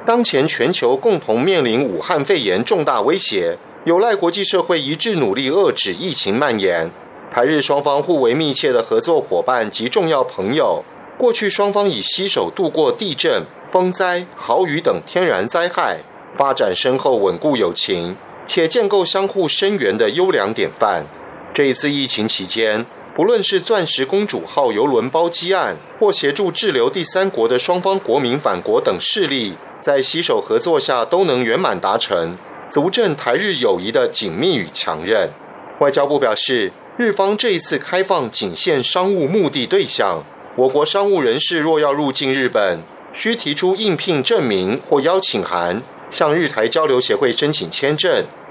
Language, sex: German, male